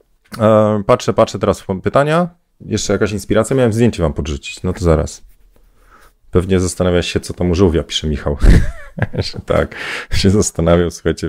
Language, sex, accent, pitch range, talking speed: Polish, male, native, 80-105 Hz, 150 wpm